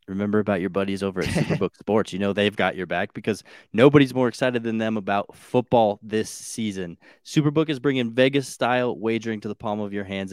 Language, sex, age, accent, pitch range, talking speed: English, male, 20-39, American, 100-120 Hz, 205 wpm